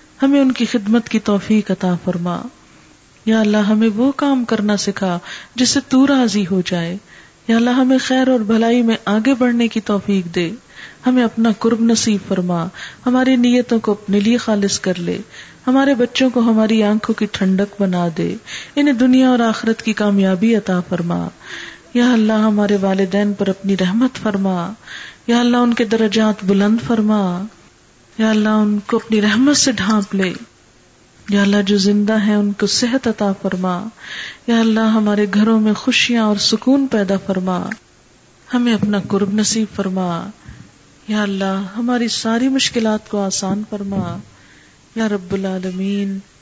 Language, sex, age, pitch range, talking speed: Urdu, female, 40-59, 195-230 Hz, 155 wpm